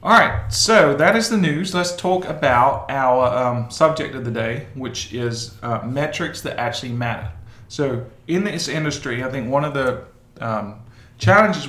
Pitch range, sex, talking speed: 115-135 Hz, male, 175 wpm